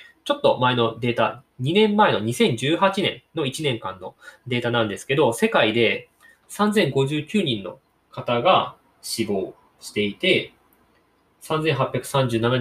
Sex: male